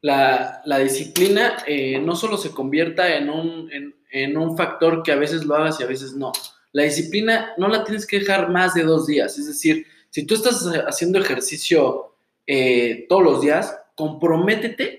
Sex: male